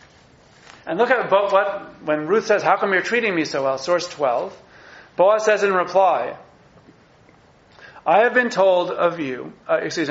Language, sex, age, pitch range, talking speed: English, male, 40-59, 155-200 Hz, 165 wpm